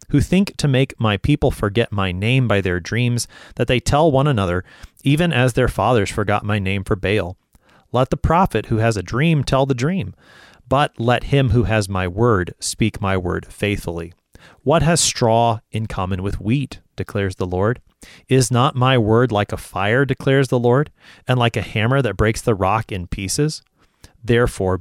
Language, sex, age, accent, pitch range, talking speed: English, male, 30-49, American, 100-130 Hz, 190 wpm